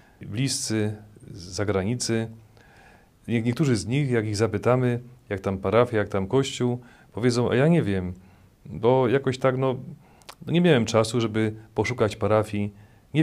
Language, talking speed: Polish, 135 wpm